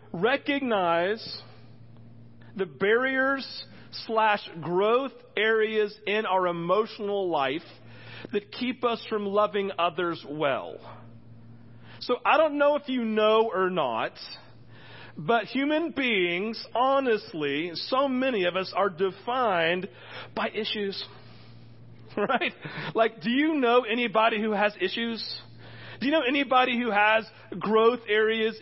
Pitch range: 145-230 Hz